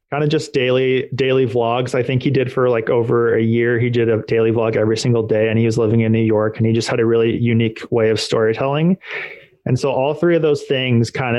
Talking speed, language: 255 wpm, English